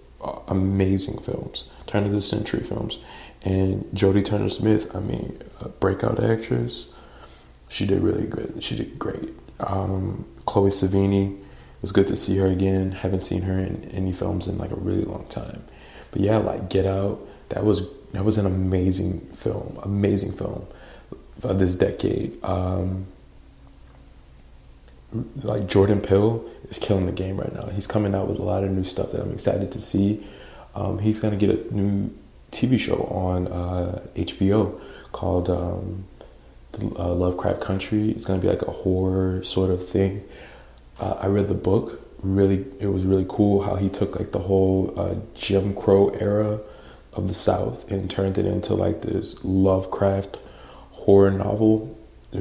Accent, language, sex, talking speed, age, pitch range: American, English, male, 165 wpm, 20-39, 95-100 Hz